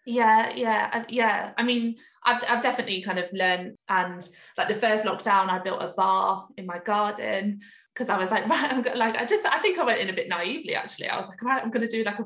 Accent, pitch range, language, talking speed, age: British, 185-230 Hz, English, 255 wpm, 20-39